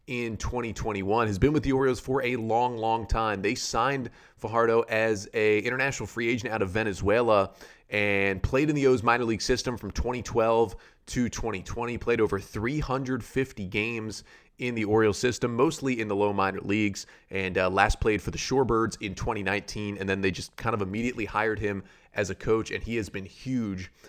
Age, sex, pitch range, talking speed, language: 30-49, male, 100-125 Hz, 185 wpm, English